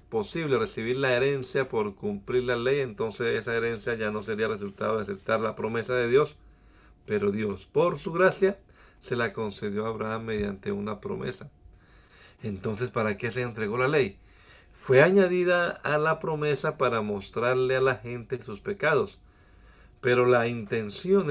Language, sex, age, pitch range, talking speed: Spanish, male, 50-69, 110-155 Hz, 160 wpm